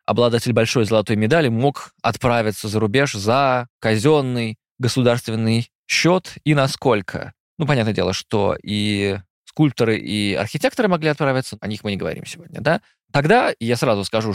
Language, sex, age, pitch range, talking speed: Russian, male, 20-39, 110-155 Hz, 145 wpm